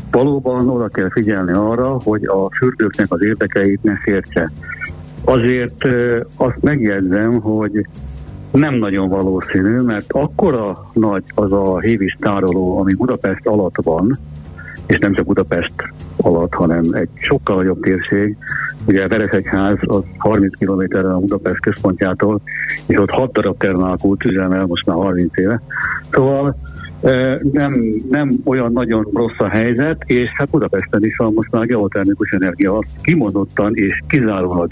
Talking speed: 135 wpm